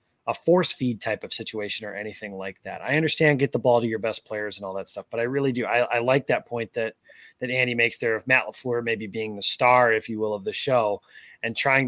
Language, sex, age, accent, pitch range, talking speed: English, male, 30-49, American, 115-145 Hz, 265 wpm